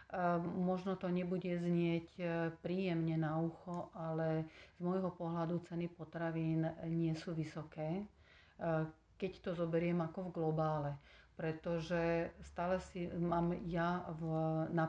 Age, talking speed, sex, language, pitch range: 40-59, 115 wpm, female, Slovak, 160-175 Hz